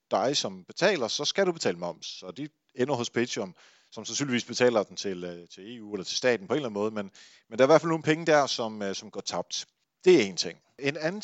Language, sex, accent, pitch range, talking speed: Danish, male, native, 110-145 Hz, 255 wpm